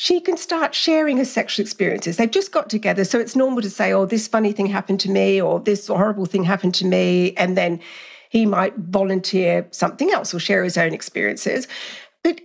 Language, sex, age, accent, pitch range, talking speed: English, female, 50-69, British, 190-270 Hz, 205 wpm